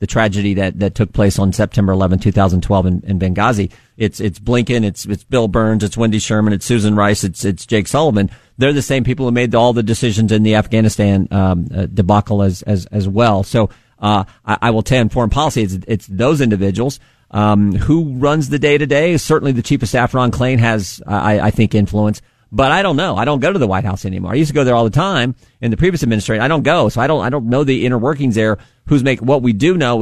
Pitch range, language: 100-120 Hz, English